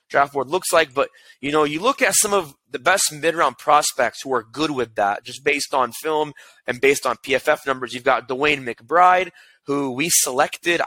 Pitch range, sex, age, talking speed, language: 130-165 Hz, male, 20-39, 210 wpm, English